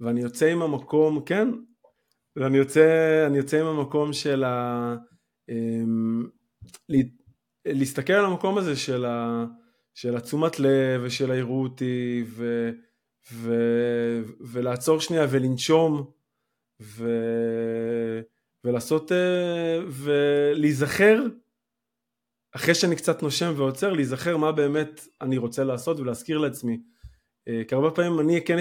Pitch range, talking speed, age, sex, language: 120-165 Hz, 105 wpm, 20-39, male, Hebrew